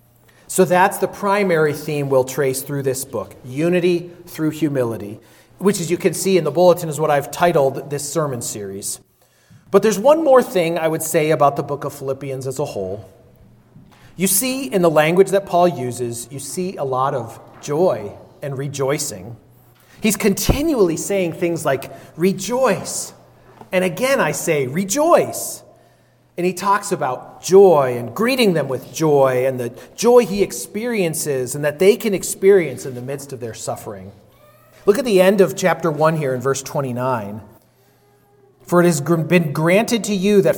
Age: 40-59